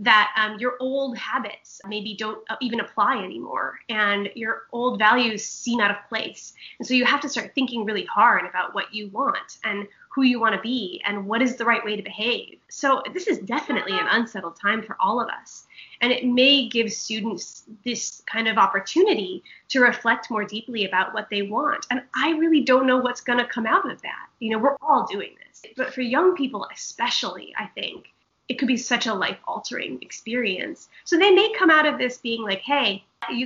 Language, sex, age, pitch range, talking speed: English, female, 20-39, 215-255 Hz, 210 wpm